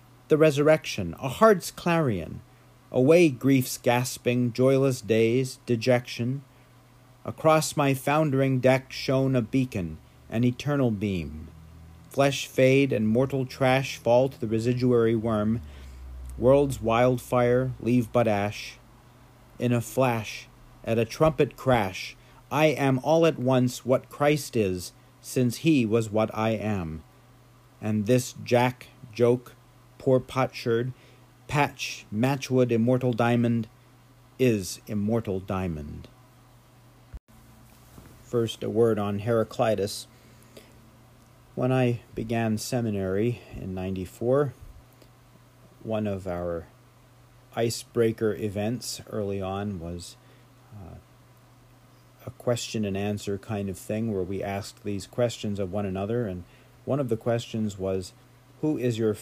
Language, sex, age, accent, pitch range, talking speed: English, male, 50-69, American, 110-130 Hz, 115 wpm